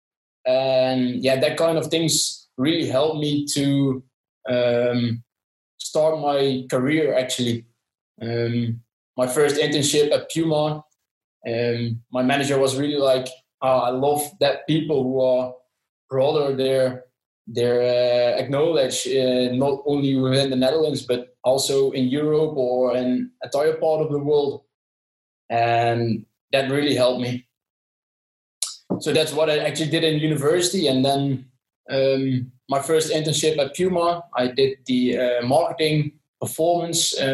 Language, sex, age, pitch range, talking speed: Swedish, male, 20-39, 120-145 Hz, 130 wpm